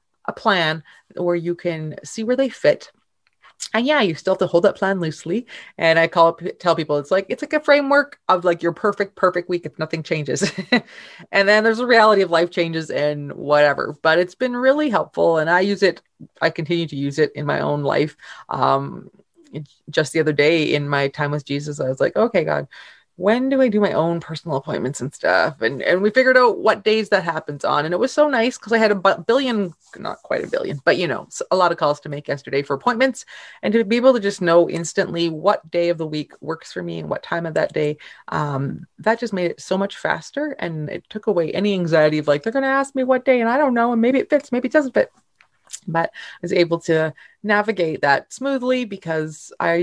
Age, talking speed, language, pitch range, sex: 30-49, 235 wpm, English, 155-230 Hz, female